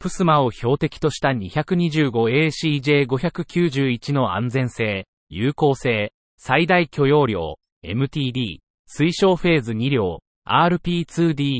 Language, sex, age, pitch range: Japanese, male, 40-59, 120-170 Hz